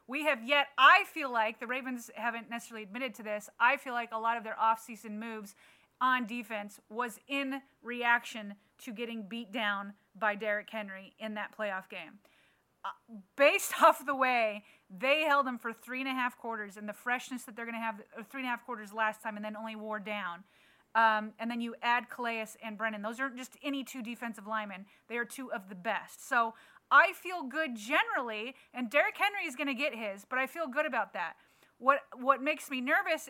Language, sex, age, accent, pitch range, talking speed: English, female, 30-49, American, 230-295 Hz, 210 wpm